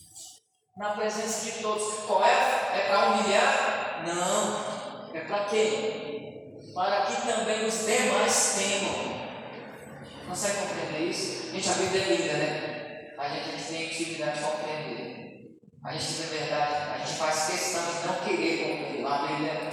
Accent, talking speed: Brazilian, 160 wpm